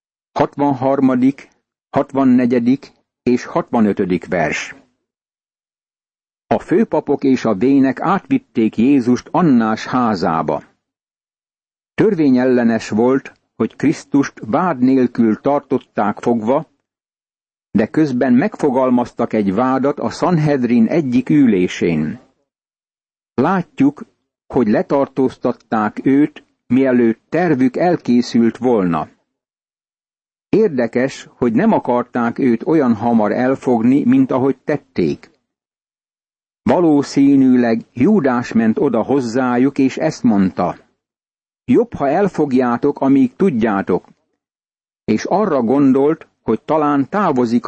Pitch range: 120-155 Hz